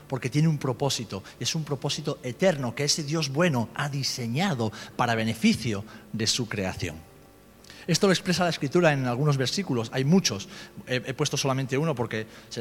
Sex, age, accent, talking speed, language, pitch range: male, 40-59, Spanish, 165 wpm, Spanish, 130-205 Hz